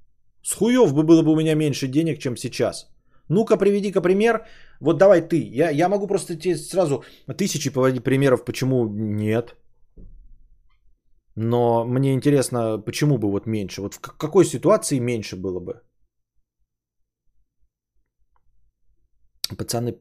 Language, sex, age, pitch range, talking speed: Bulgarian, male, 30-49, 115-170 Hz, 130 wpm